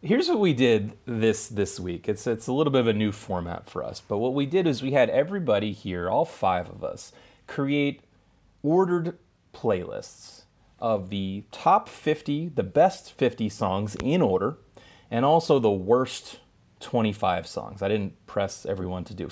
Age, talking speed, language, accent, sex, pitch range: 30-49, 175 wpm, English, American, male, 95-125 Hz